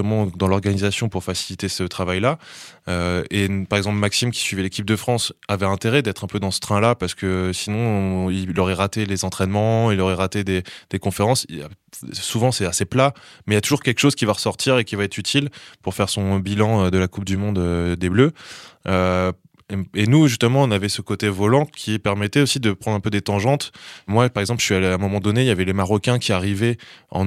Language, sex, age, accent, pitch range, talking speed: French, male, 20-39, French, 95-115 Hz, 240 wpm